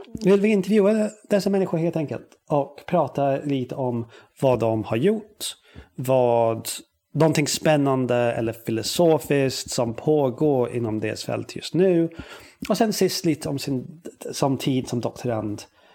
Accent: native